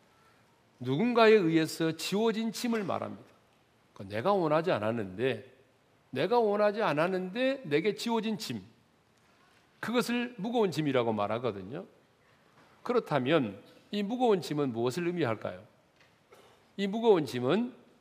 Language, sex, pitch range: Korean, male, 145-230 Hz